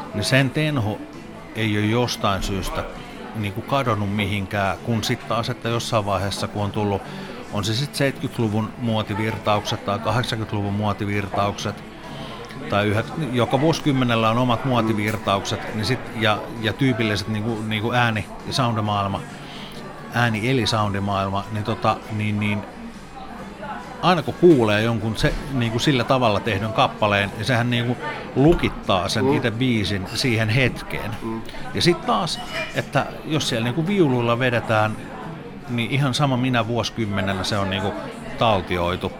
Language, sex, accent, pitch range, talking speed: Finnish, male, native, 100-120 Hz, 140 wpm